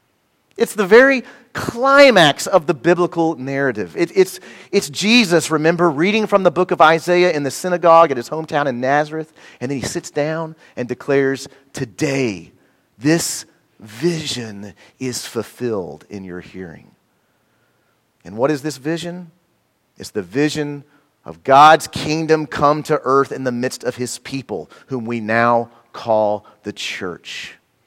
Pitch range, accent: 130-175 Hz, American